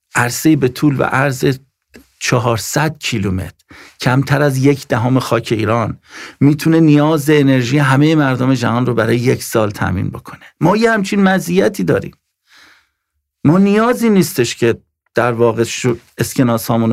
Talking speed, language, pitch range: 135 wpm, English, 115-150 Hz